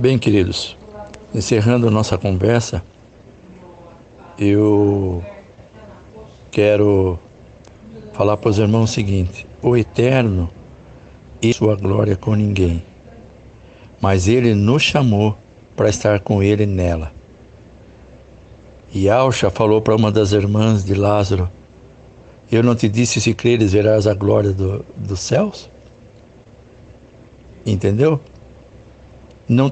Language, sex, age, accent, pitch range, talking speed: Portuguese, male, 60-79, Brazilian, 100-115 Hz, 105 wpm